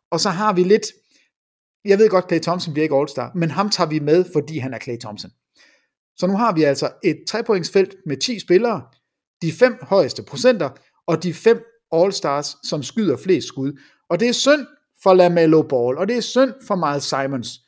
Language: English